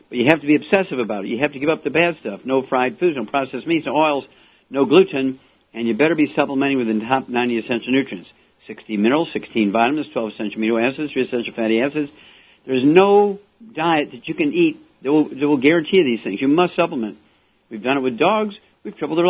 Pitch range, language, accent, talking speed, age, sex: 120-155 Hz, English, American, 235 wpm, 60-79, male